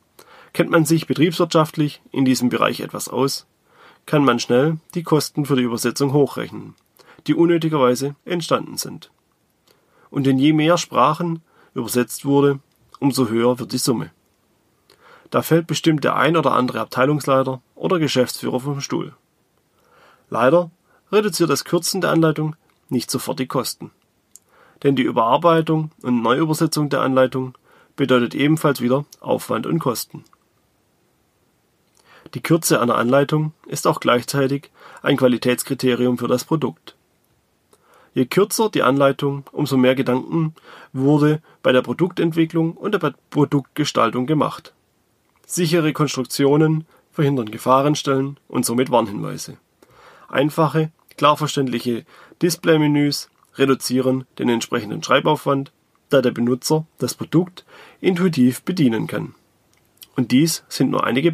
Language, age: German, 30-49